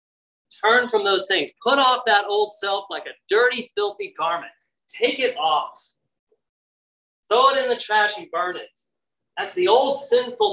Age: 30-49